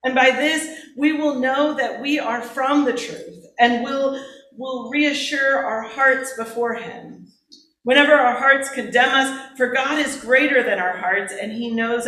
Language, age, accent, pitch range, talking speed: English, 40-59, American, 200-260 Hz, 175 wpm